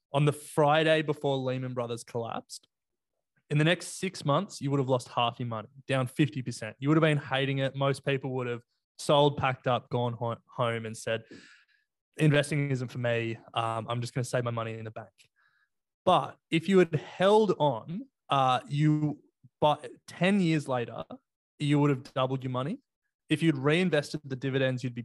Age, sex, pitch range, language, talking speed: 20-39, male, 120-150 Hz, English, 185 wpm